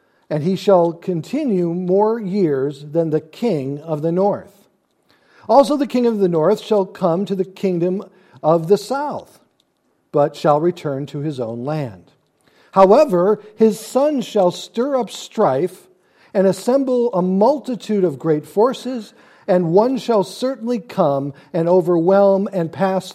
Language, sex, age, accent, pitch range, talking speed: English, male, 50-69, American, 155-215 Hz, 145 wpm